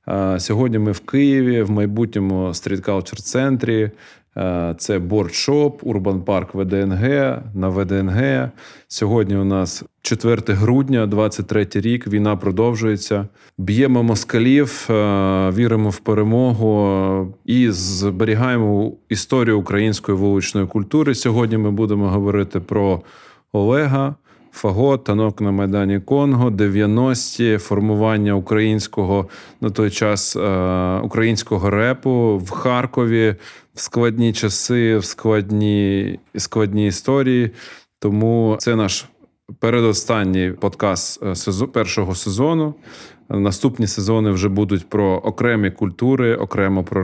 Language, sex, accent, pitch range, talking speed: Ukrainian, male, native, 100-115 Hz, 100 wpm